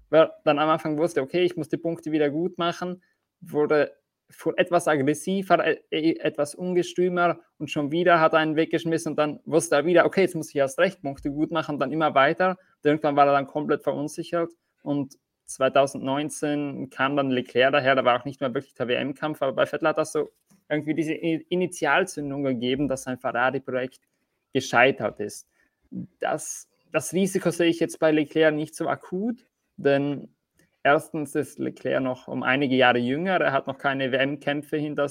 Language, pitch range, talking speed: German, 140-160 Hz, 180 wpm